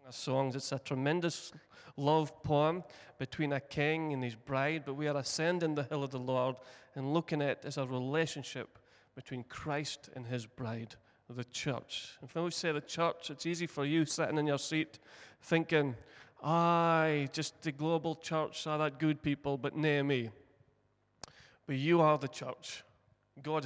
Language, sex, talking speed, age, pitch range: English, male, 170 wpm, 30-49, 135-155 Hz